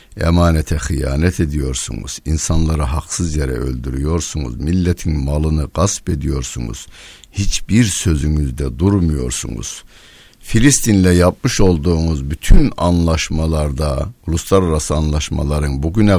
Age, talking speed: 60-79, 80 wpm